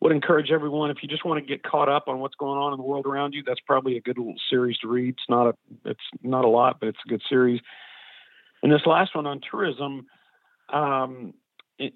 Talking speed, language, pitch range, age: 240 wpm, English, 120-145 Hz, 50-69